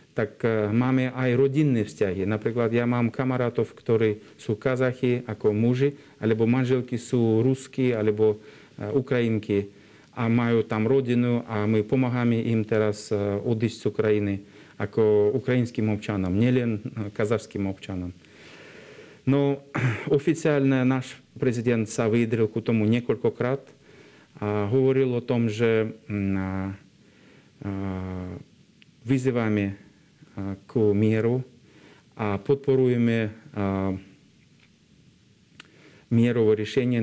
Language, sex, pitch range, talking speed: Slovak, male, 105-125 Hz, 95 wpm